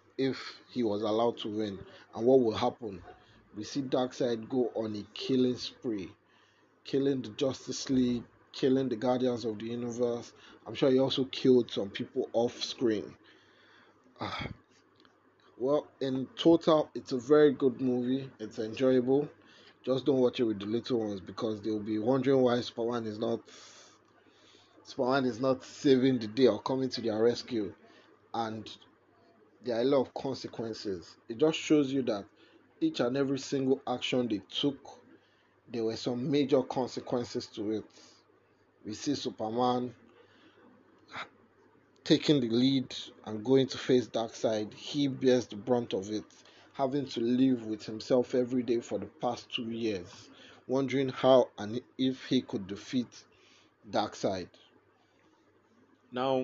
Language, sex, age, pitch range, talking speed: English, male, 30-49, 115-135 Hz, 145 wpm